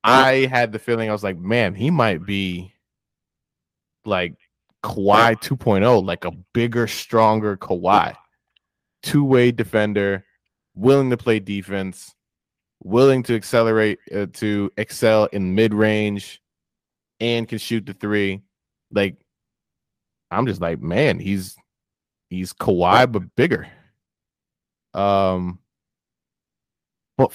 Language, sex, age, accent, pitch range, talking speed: English, male, 20-39, American, 100-115 Hz, 110 wpm